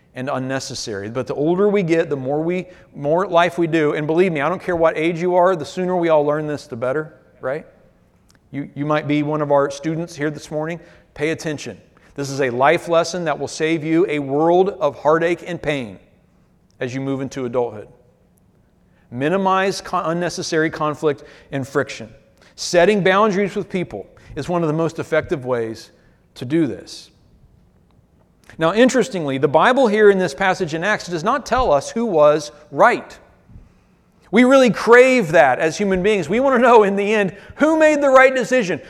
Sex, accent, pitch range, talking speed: male, American, 145-205 Hz, 190 wpm